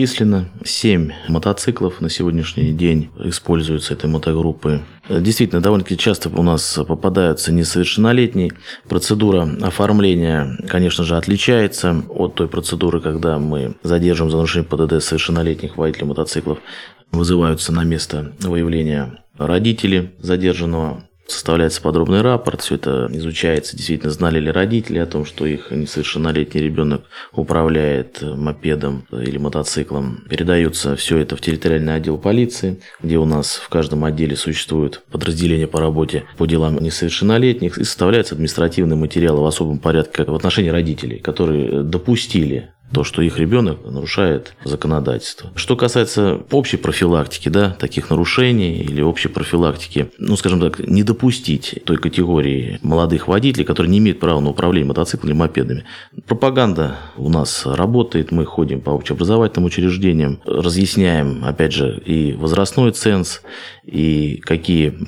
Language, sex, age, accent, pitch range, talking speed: Russian, male, 20-39, native, 75-90 Hz, 130 wpm